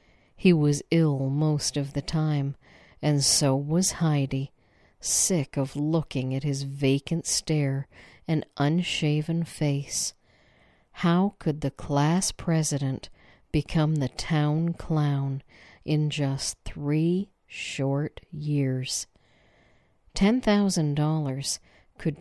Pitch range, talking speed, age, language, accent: 135-170 Hz, 100 wpm, 50-69, English, American